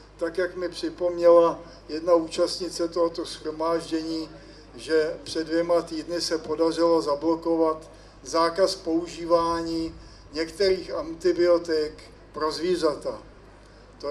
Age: 50-69